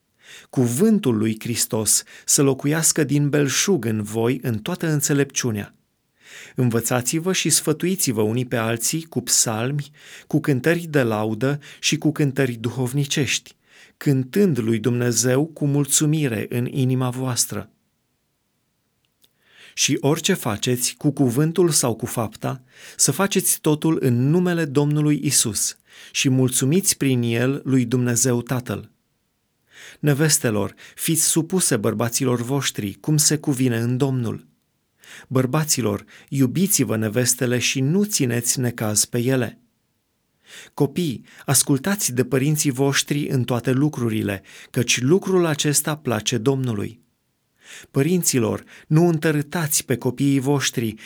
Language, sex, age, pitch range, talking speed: Romanian, male, 30-49, 120-150 Hz, 115 wpm